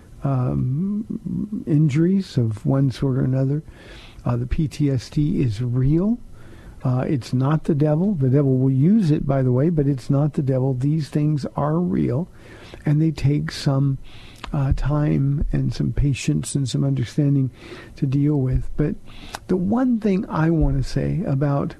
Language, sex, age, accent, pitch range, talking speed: English, male, 50-69, American, 130-165 Hz, 160 wpm